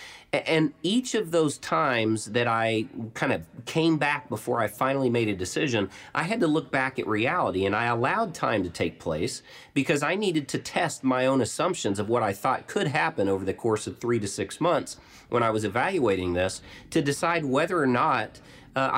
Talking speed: 200 wpm